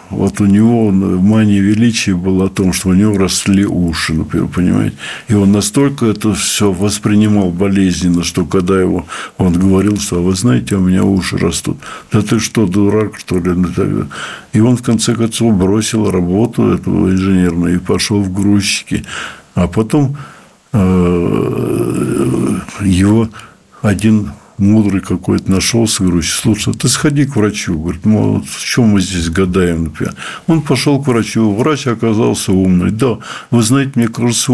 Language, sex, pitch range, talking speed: Russian, male, 95-115 Hz, 150 wpm